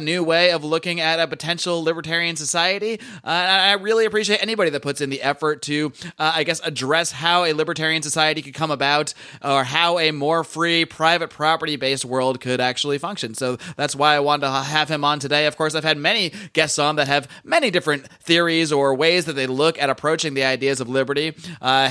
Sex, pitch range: male, 140-175 Hz